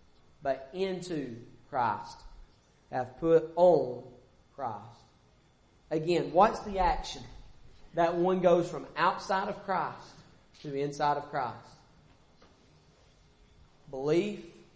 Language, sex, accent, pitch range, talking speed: English, male, American, 145-175 Hz, 95 wpm